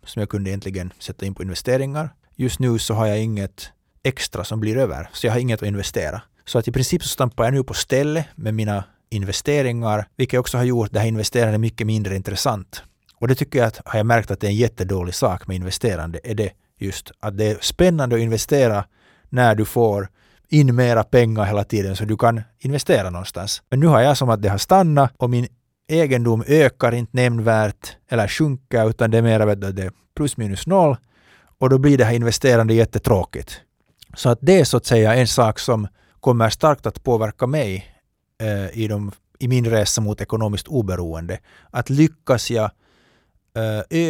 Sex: male